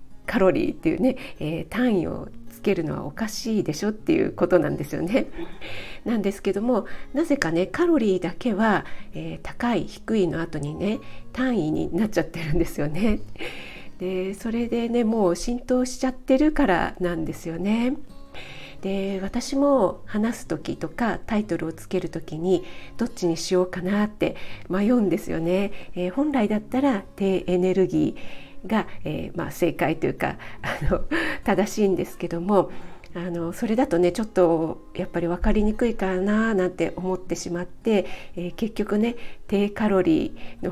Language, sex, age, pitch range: Japanese, female, 50-69, 170-225 Hz